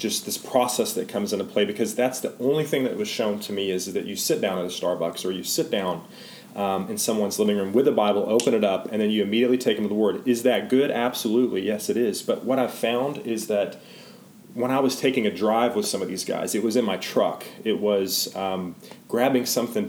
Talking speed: 250 wpm